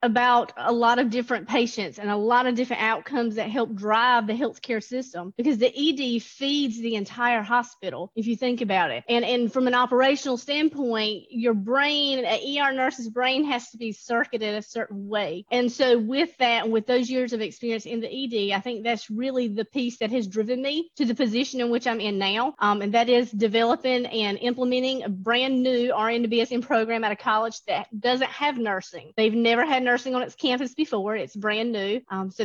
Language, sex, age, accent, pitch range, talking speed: English, female, 30-49, American, 215-255 Hz, 210 wpm